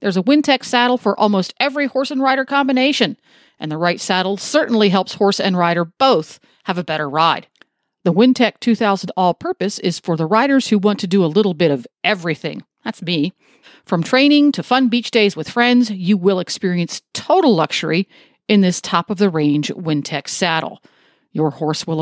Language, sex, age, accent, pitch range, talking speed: English, female, 50-69, American, 175-250 Hz, 190 wpm